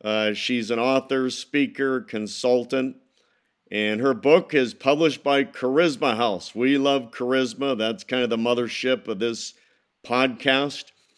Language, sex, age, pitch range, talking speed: English, male, 50-69, 120-140 Hz, 135 wpm